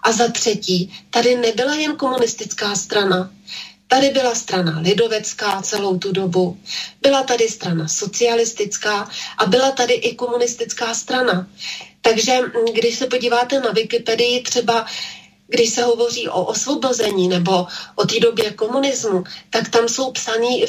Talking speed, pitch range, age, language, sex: 135 wpm, 210-245 Hz, 30-49, Slovak, female